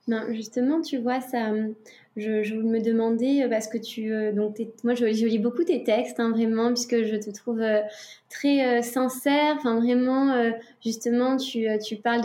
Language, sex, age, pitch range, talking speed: French, female, 20-39, 225-255 Hz, 190 wpm